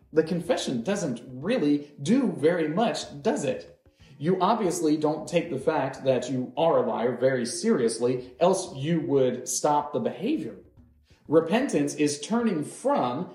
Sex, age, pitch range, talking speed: male, 40-59, 125-185 Hz, 145 wpm